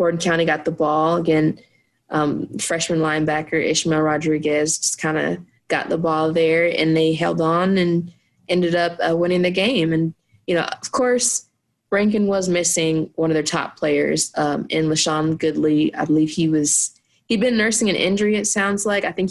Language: English